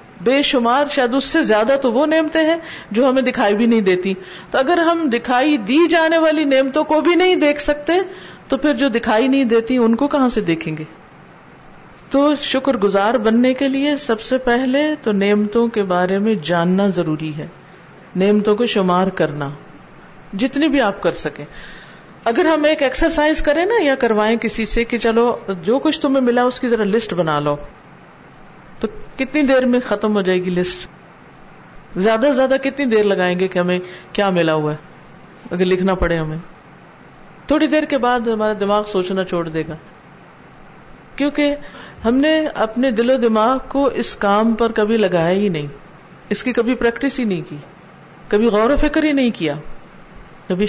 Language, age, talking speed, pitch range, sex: Urdu, 50-69, 180 wpm, 190-270 Hz, female